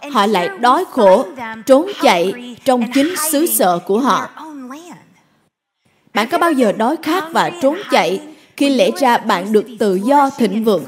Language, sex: Vietnamese, female